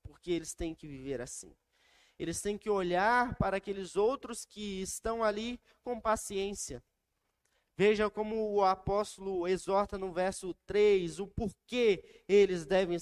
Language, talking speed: Portuguese, 140 wpm